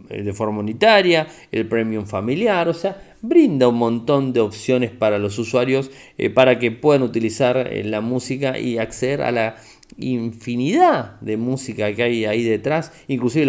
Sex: male